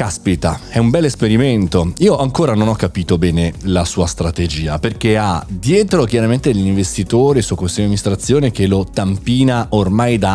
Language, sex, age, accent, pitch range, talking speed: Italian, male, 30-49, native, 90-115 Hz, 175 wpm